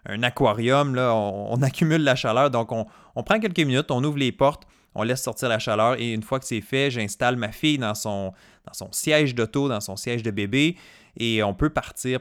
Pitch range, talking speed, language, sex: 110-145 Hz, 225 wpm, French, male